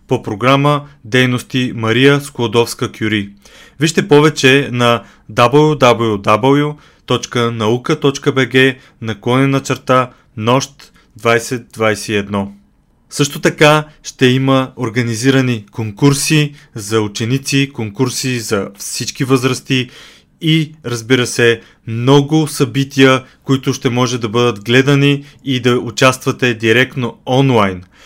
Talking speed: 90 wpm